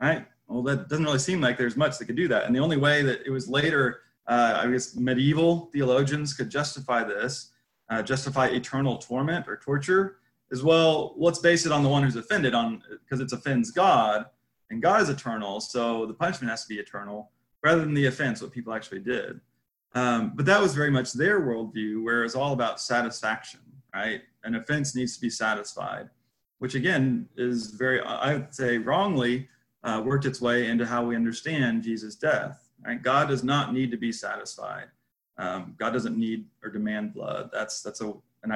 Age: 30-49